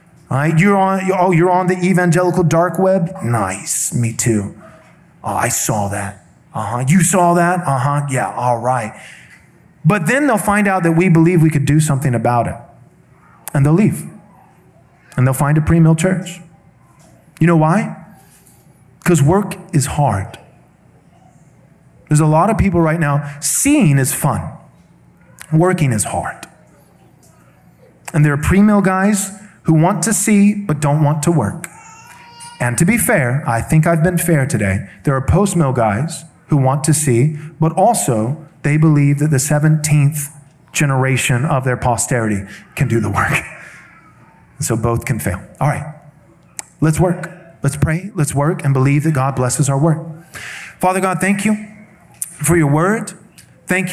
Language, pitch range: English, 140-180 Hz